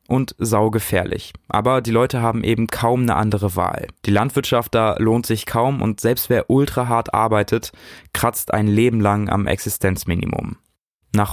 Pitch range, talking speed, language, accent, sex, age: 105-120 Hz, 160 wpm, German, German, male, 20-39